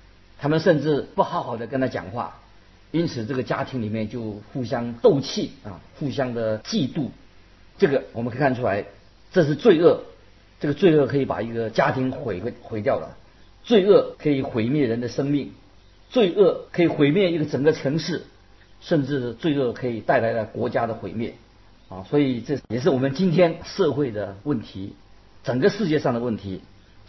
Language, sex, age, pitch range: Chinese, male, 50-69, 105-155 Hz